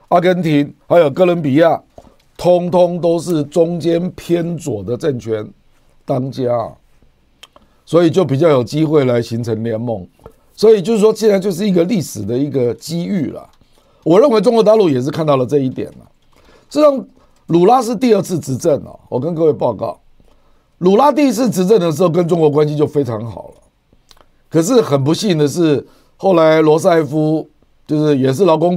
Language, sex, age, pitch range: Chinese, male, 50-69, 140-180 Hz